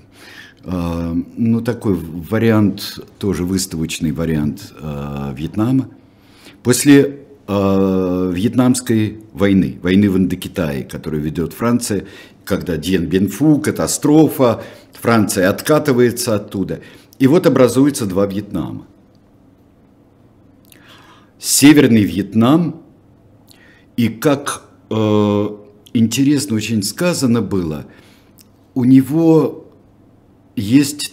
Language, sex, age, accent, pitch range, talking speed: Russian, male, 50-69, native, 95-125 Hz, 85 wpm